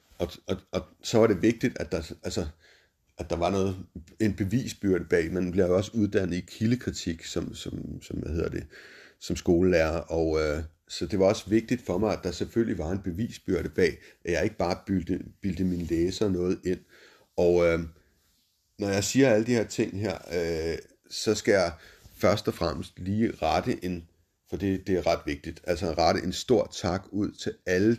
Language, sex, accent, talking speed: Danish, male, native, 195 wpm